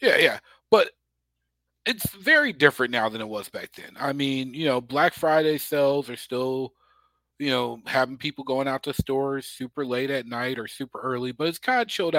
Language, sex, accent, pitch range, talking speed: English, male, American, 120-155 Hz, 200 wpm